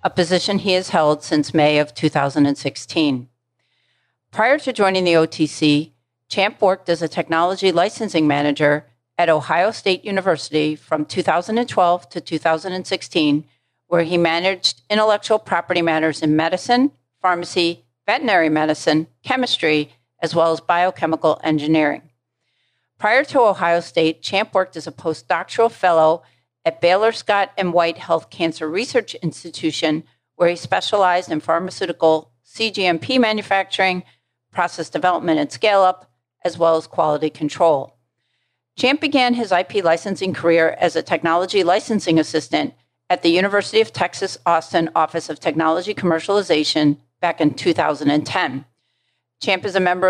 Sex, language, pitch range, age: female, English, 155-185 Hz, 50-69